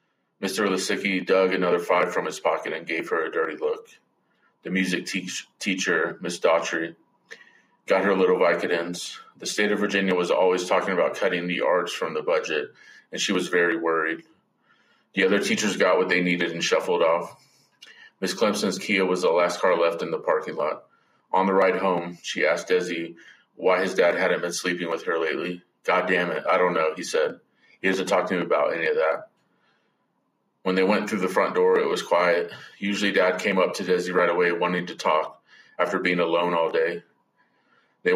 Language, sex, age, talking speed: English, male, 30-49, 195 wpm